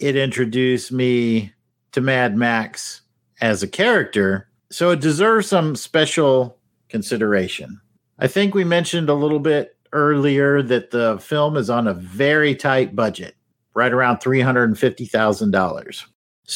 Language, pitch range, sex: English, 115-165 Hz, male